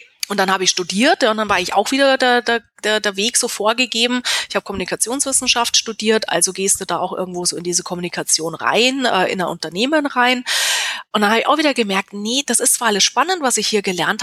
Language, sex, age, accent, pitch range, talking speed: German, female, 30-49, German, 200-260 Hz, 230 wpm